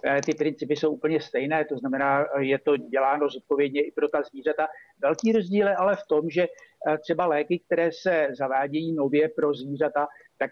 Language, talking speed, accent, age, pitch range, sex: Czech, 175 wpm, native, 50-69, 150-175 Hz, male